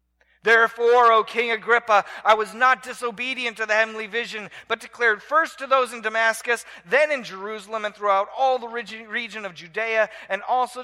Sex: male